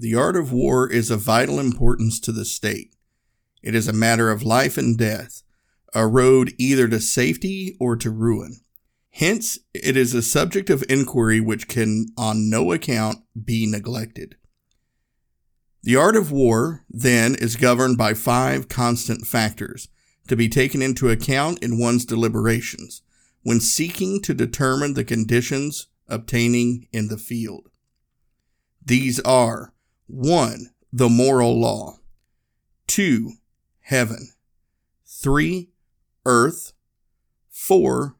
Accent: American